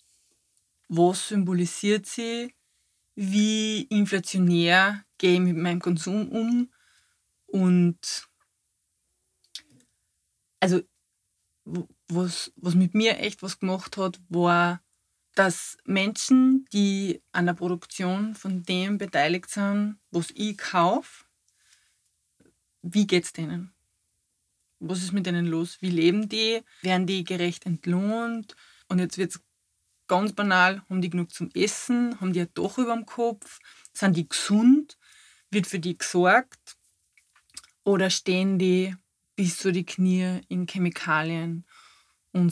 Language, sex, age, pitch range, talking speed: German, female, 20-39, 170-195 Hz, 120 wpm